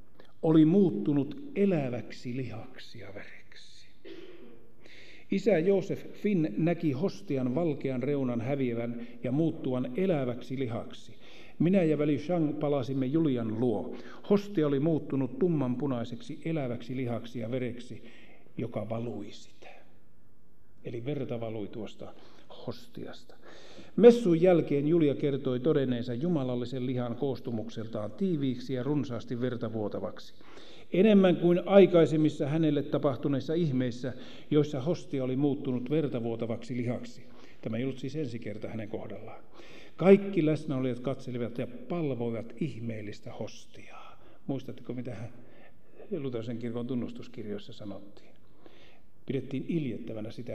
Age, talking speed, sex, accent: 50-69, 110 wpm, male, native